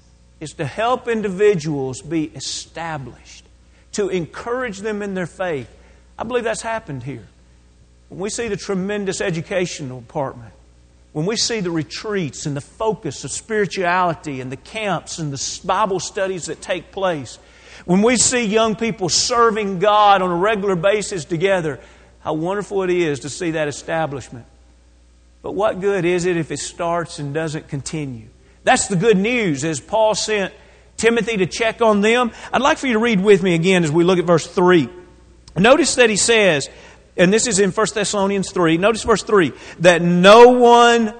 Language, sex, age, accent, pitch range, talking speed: English, male, 40-59, American, 155-220 Hz, 175 wpm